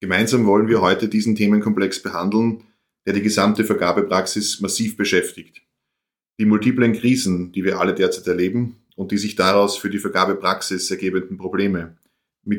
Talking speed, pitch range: 150 wpm, 95-110 Hz